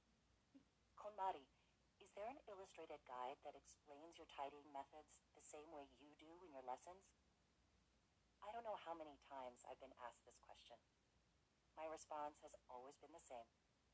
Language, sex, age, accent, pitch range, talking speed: English, female, 40-59, American, 125-175 Hz, 155 wpm